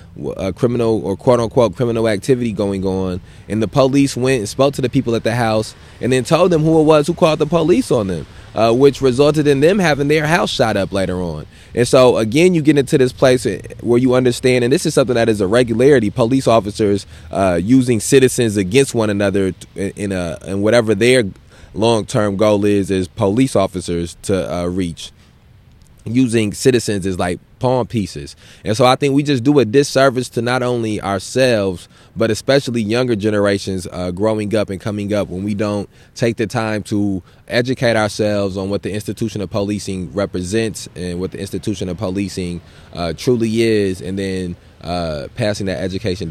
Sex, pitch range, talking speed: male, 95-125 Hz, 190 wpm